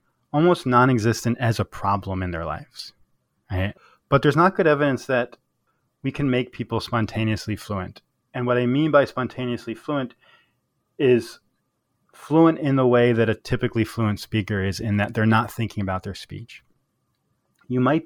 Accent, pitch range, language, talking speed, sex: American, 105-130 Hz, English, 160 wpm, male